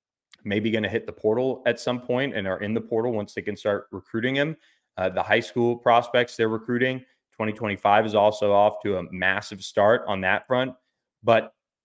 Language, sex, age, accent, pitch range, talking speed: English, male, 20-39, American, 95-115 Hz, 200 wpm